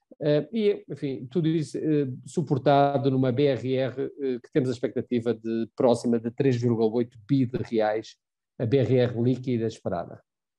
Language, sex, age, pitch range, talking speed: Portuguese, male, 50-69, 115-140 Hz, 125 wpm